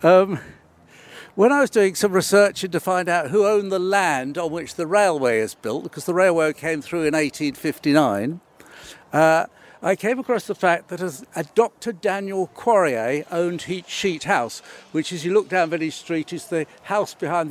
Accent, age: British, 60-79